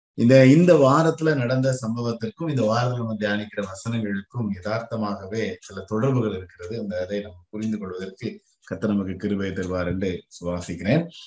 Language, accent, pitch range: Tamil, native, 95-130 Hz